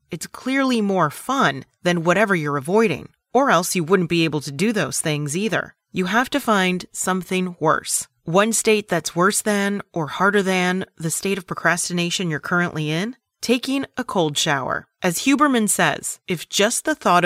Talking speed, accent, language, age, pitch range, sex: 175 wpm, American, English, 30-49, 160-215 Hz, female